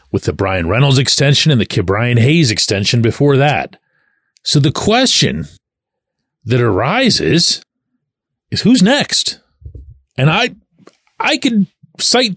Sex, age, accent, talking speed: male, 40-59, American, 120 wpm